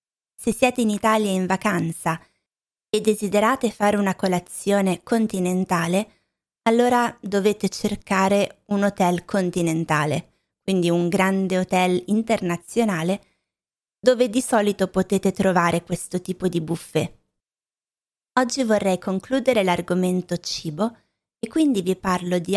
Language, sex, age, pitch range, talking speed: Italian, female, 20-39, 180-220 Hz, 110 wpm